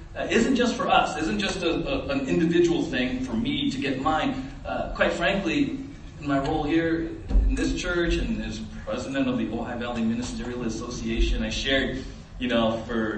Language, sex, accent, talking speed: English, male, American, 185 wpm